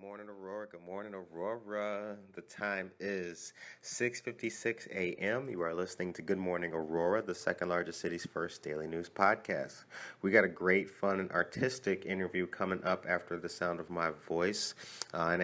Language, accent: English, American